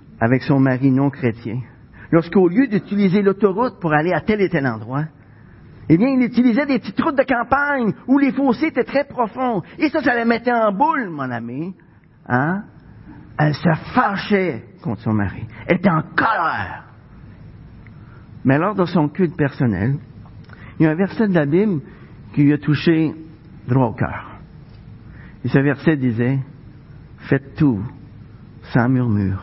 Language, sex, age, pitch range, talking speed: French, male, 50-69, 115-170 Hz, 165 wpm